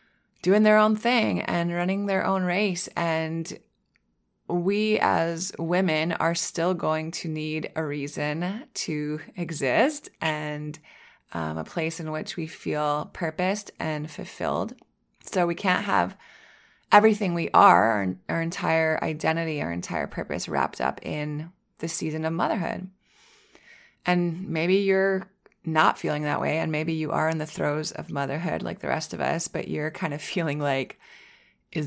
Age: 20-39